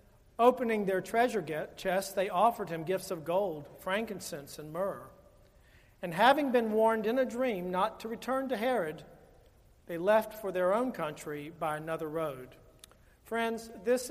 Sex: male